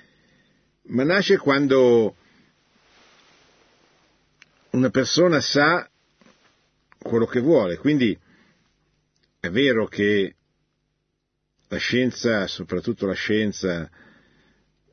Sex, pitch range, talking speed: male, 100-130 Hz, 70 wpm